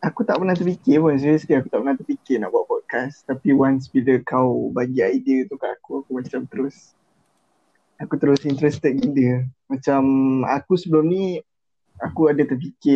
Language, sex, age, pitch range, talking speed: Malay, male, 20-39, 130-160 Hz, 165 wpm